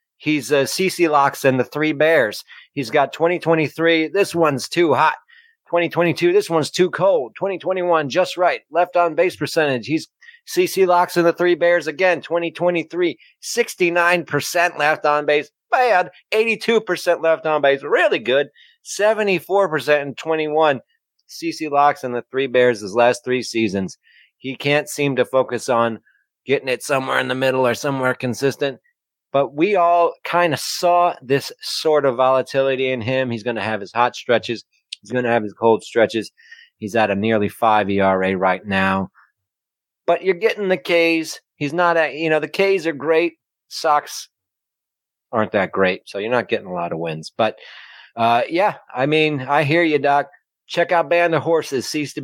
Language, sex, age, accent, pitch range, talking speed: English, male, 30-49, American, 130-175 Hz, 170 wpm